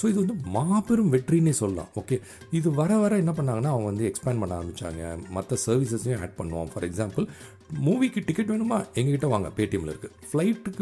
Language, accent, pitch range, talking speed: Tamil, native, 95-145 Hz, 170 wpm